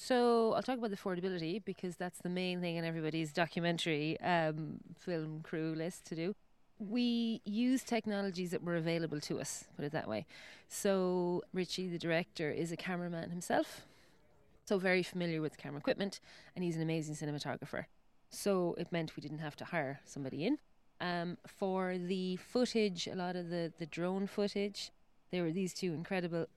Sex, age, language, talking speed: female, 30-49, English, 175 wpm